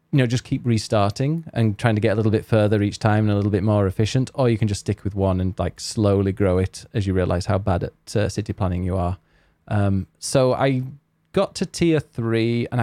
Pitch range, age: 100-125 Hz, 20-39